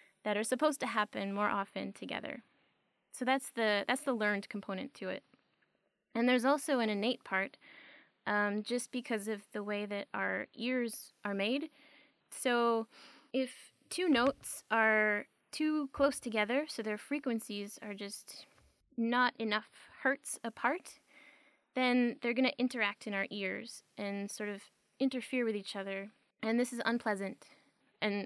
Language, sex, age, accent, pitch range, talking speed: English, female, 20-39, American, 205-265 Hz, 150 wpm